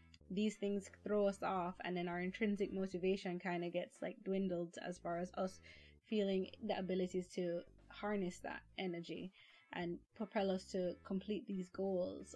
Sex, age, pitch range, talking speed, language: female, 20-39, 180-210 Hz, 160 wpm, English